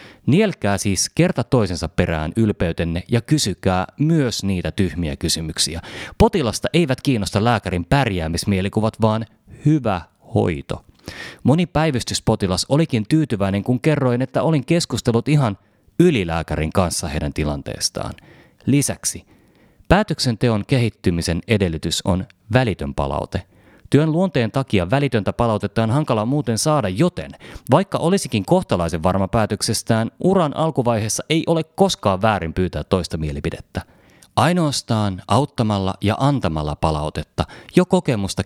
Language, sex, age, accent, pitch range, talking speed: Finnish, male, 30-49, native, 90-140 Hz, 110 wpm